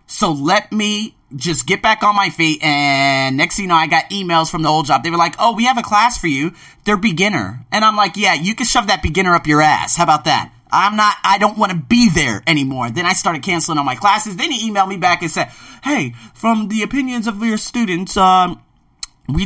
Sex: male